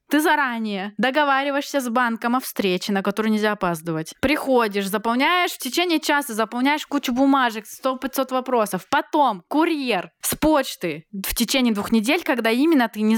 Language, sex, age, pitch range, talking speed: Russian, female, 20-39, 220-285 Hz, 150 wpm